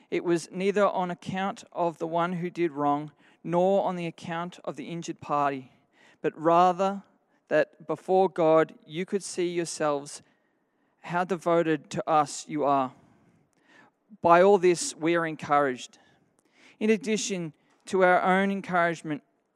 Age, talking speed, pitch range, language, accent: 40-59, 140 wpm, 160-185 Hz, English, Australian